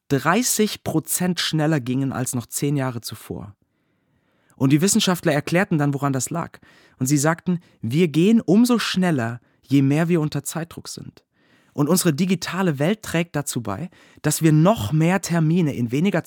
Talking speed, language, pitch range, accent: 160 wpm, German, 135-175 Hz, German